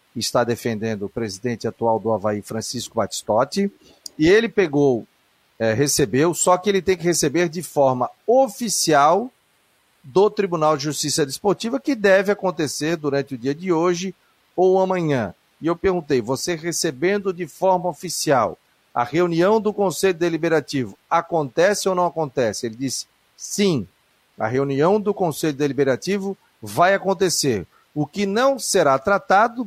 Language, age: Portuguese, 40-59